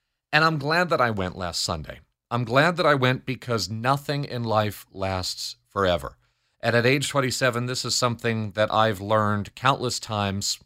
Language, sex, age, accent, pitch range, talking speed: English, male, 40-59, American, 105-130 Hz, 175 wpm